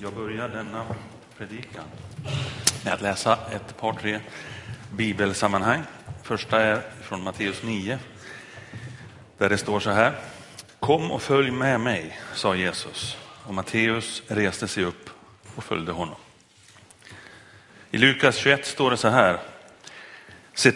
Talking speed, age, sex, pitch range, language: 125 wpm, 30-49, male, 95-115 Hz, Swedish